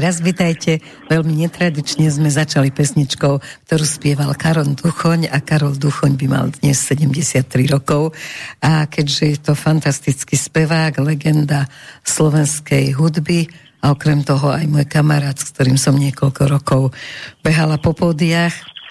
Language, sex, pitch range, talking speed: Slovak, female, 145-160 Hz, 135 wpm